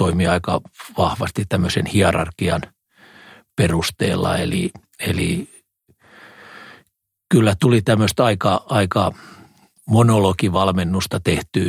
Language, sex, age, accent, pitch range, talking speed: Finnish, male, 50-69, native, 90-110 Hz, 75 wpm